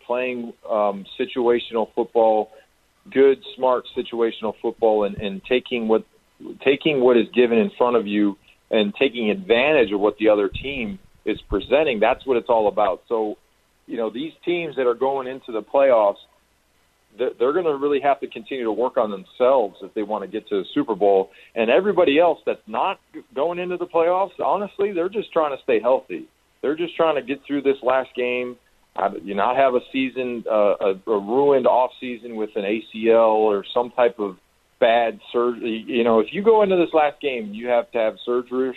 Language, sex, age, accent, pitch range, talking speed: English, male, 40-59, American, 110-150 Hz, 195 wpm